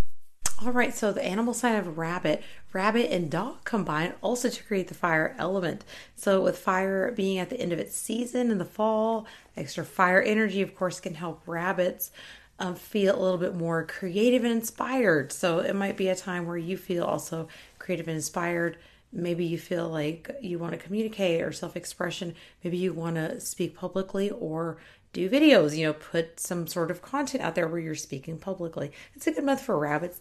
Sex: female